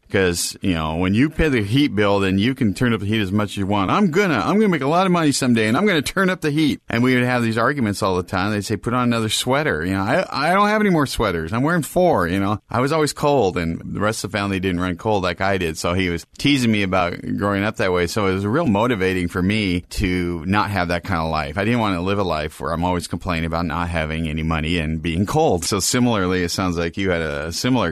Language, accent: English, American